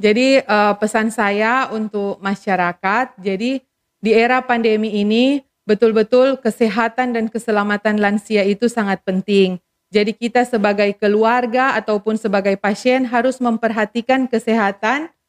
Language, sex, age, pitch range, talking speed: Indonesian, female, 40-59, 205-245 Hz, 115 wpm